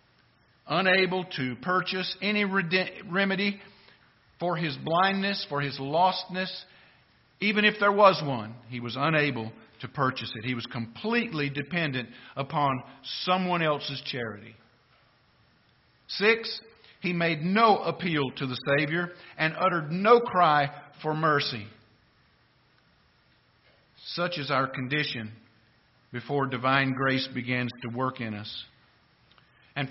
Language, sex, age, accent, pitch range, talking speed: English, male, 50-69, American, 120-175 Hz, 115 wpm